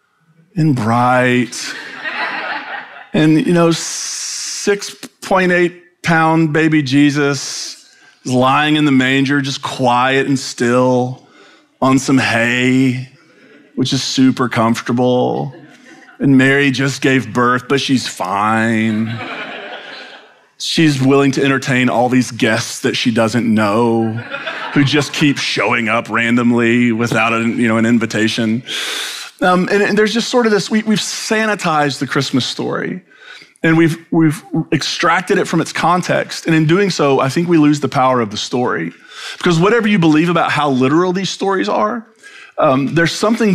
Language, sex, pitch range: English, male, 125-170 Hz